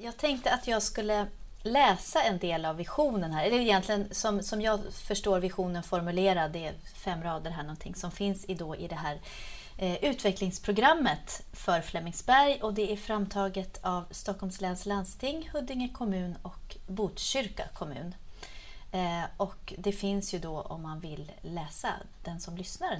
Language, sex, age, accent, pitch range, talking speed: Swedish, female, 30-49, native, 180-220 Hz, 155 wpm